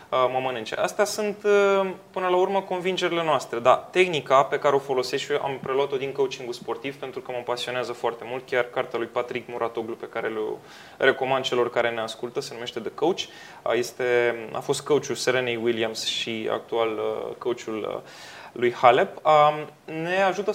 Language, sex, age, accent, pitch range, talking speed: Romanian, male, 20-39, native, 135-205 Hz, 170 wpm